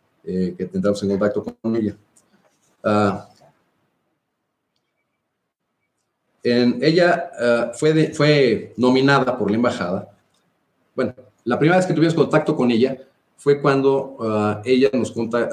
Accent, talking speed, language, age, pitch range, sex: Mexican, 130 wpm, English, 40-59, 105-135 Hz, male